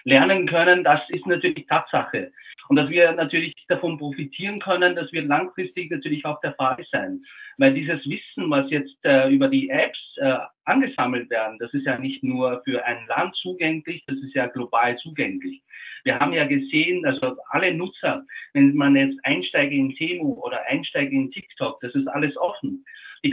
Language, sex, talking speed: German, male, 175 wpm